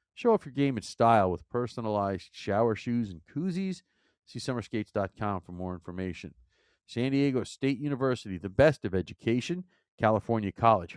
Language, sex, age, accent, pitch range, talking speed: English, male, 40-59, American, 95-125 Hz, 150 wpm